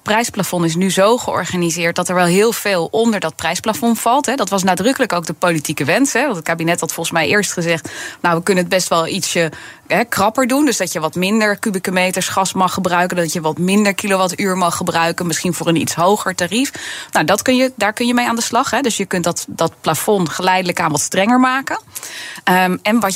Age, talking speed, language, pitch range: 20-39, 225 wpm, Dutch, 170-220 Hz